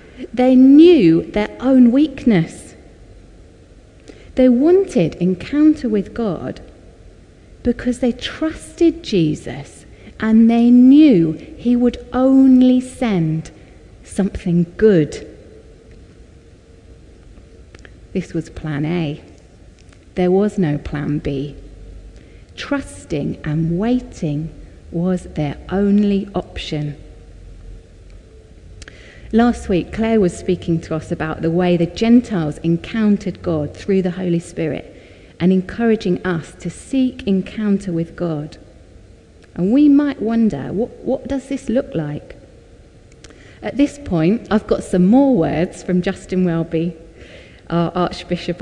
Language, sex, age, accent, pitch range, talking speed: English, female, 30-49, British, 150-225 Hz, 110 wpm